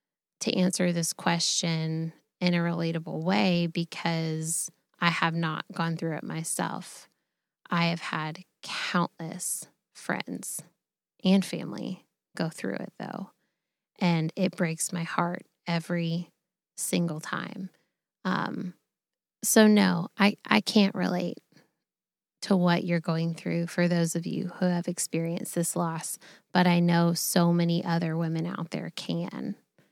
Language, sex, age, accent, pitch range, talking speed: English, female, 10-29, American, 170-185 Hz, 135 wpm